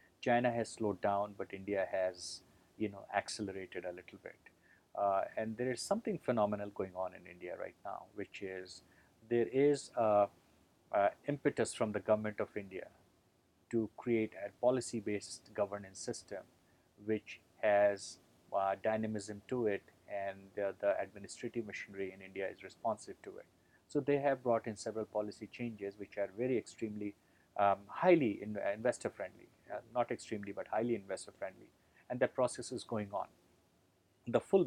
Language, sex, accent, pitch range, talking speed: English, male, Indian, 95-120 Hz, 160 wpm